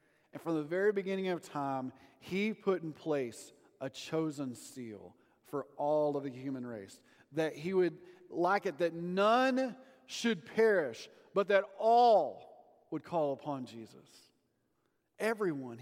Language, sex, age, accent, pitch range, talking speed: English, male, 40-59, American, 140-185 Hz, 140 wpm